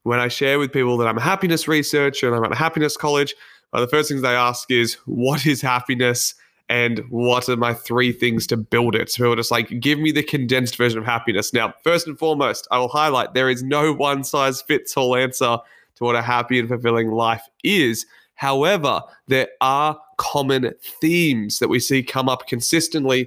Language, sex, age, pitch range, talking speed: English, male, 20-39, 120-140 Hz, 200 wpm